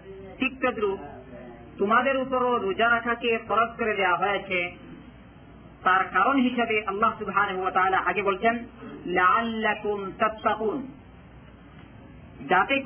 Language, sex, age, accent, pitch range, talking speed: Bengali, male, 40-59, native, 195-235 Hz, 70 wpm